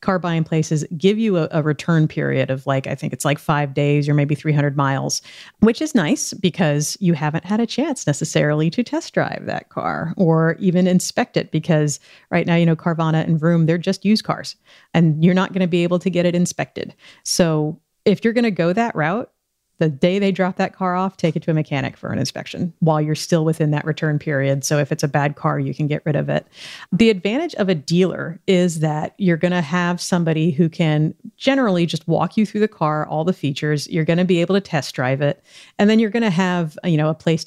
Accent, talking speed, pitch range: American, 230 wpm, 155-190 Hz